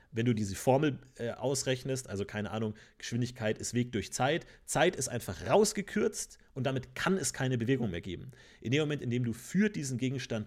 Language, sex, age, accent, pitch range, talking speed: German, male, 40-59, German, 115-140 Hz, 200 wpm